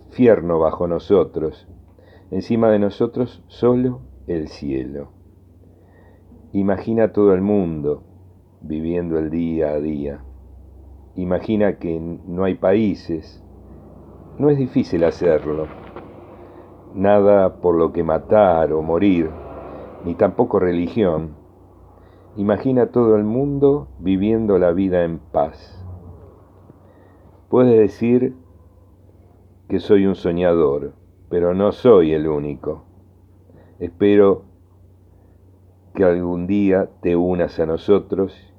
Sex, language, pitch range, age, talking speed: male, Spanish, 85-100 Hz, 50-69, 100 wpm